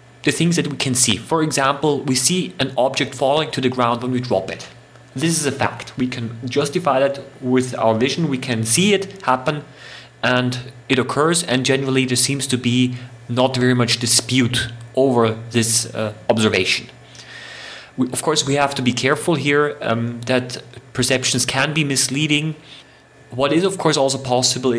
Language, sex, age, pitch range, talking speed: English, male, 30-49, 120-135 Hz, 180 wpm